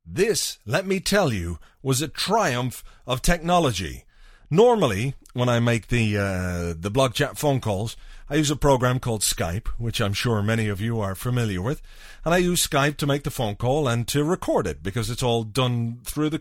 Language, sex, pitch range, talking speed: English, male, 110-160 Hz, 200 wpm